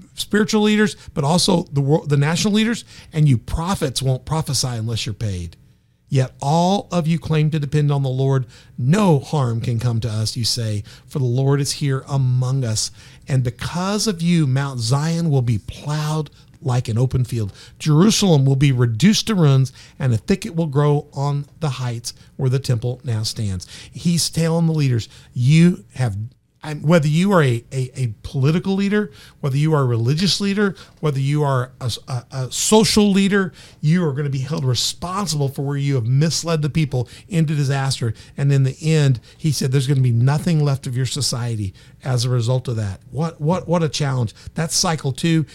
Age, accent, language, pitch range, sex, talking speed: 50-69, American, English, 125-160 Hz, male, 195 wpm